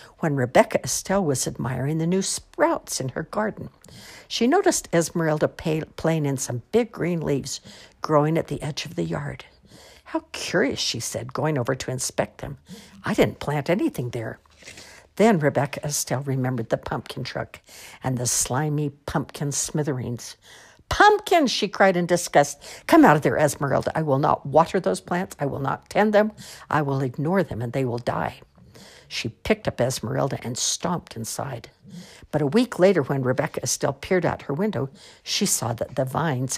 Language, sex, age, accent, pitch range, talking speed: English, female, 60-79, American, 135-180 Hz, 175 wpm